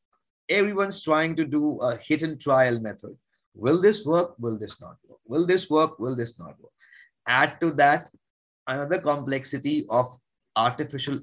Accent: Indian